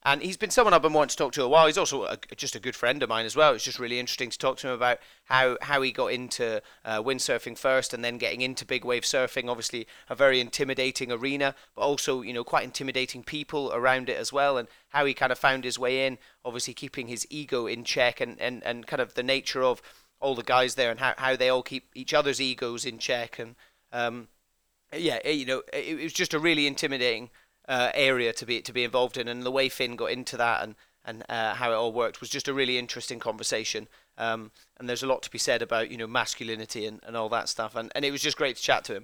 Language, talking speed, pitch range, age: English, 260 wpm, 120-140 Hz, 30-49